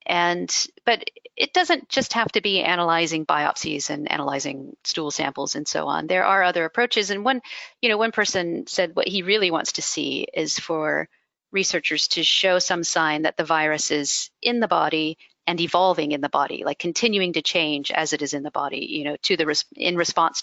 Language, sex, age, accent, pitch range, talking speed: English, female, 40-59, American, 150-185 Hz, 205 wpm